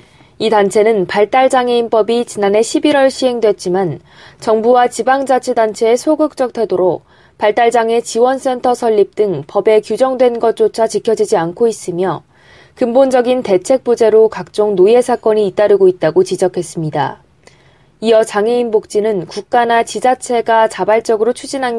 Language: Korean